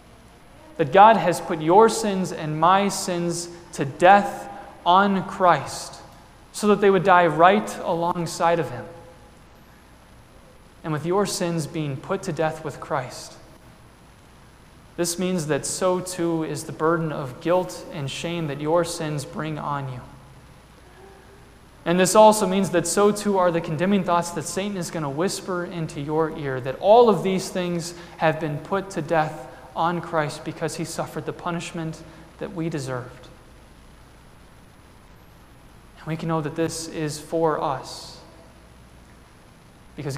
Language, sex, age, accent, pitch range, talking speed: English, male, 20-39, American, 155-190 Hz, 150 wpm